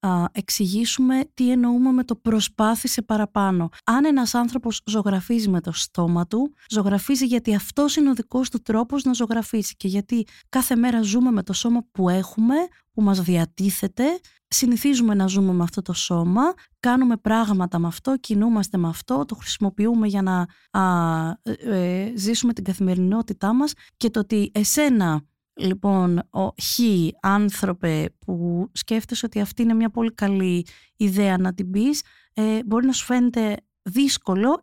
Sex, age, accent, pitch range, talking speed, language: female, 20-39, native, 195-245 Hz, 155 wpm, Greek